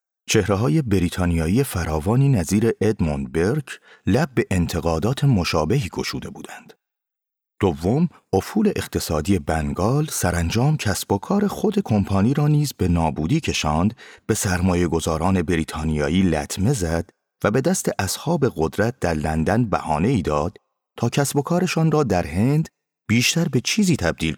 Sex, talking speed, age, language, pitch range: male, 130 wpm, 30-49, Persian, 85-120 Hz